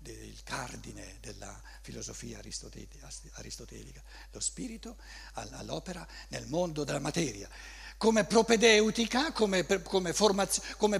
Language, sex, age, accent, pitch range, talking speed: Italian, male, 60-79, native, 145-220 Hz, 80 wpm